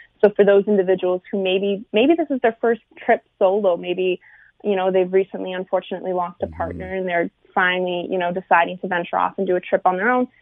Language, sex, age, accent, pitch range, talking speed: English, female, 20-39, American, 180-210 Hz, 220 wpm